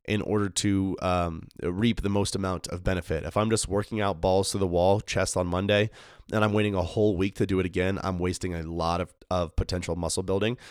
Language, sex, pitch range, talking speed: English, male, 90-105 Hz, 230 wpm